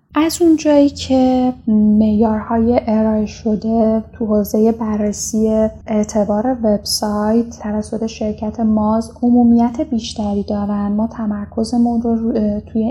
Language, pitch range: Persian, 205-235 Hz